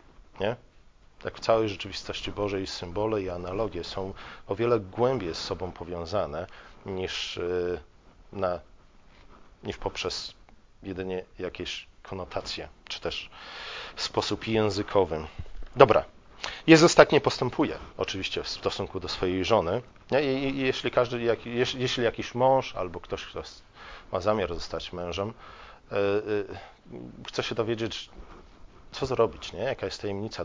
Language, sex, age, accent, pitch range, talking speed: Polish, male, 40-59, native, 90-115 Hz, 130 wpm